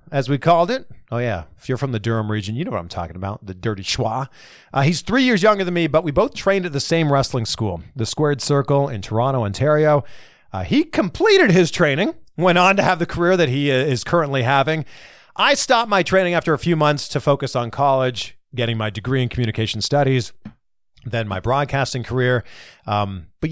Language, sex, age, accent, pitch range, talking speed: English, male, 40-59, American, 120-185 Hz, 210 wpm